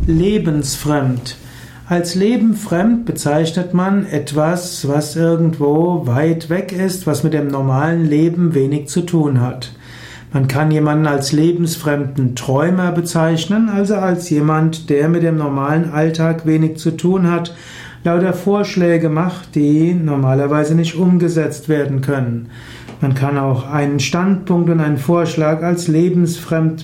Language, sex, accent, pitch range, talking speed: German, male, German, 140-175 Hz, 130 wpm